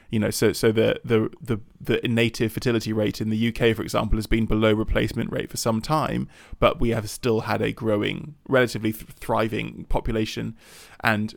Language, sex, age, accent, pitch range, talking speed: English, male, 20-39, British, 110-115 Hz, 190 wpm